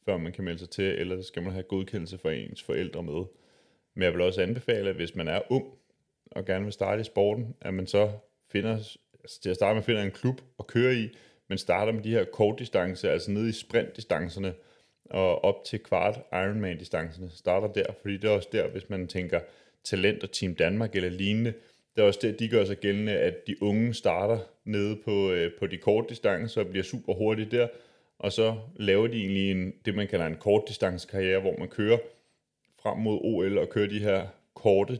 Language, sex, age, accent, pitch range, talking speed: Danish, male, 30-49, native, 95-110 Hz, 215 wpm